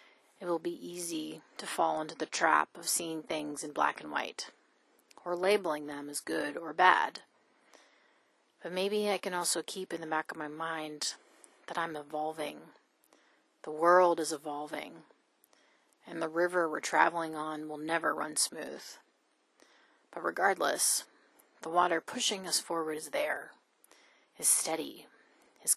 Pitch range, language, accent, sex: 155-175 Hz, English, American, female